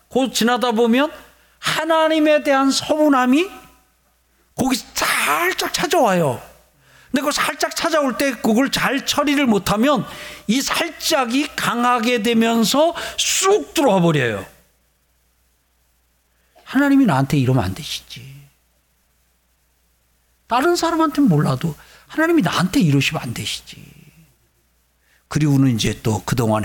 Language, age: Korean, 50-69